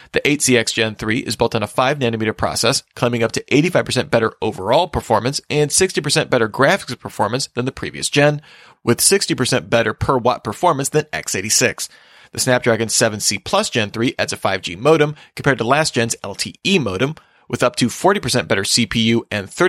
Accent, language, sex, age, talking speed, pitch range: American, English, male, 30-49, 175 wpm, 115-145 Hz